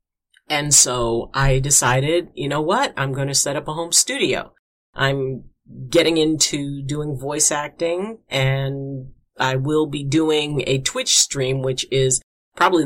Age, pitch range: 50-69, 130-155 Hz